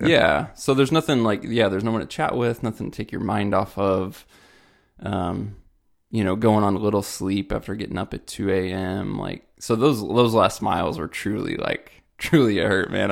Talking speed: 210 wpm